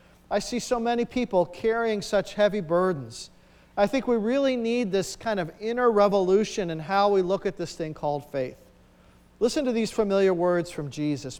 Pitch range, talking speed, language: 160-220 Hz, 185 wpm, English